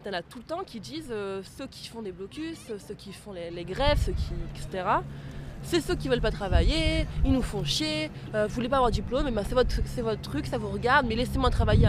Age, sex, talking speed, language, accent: 20-39, female, 250 wpm, French, French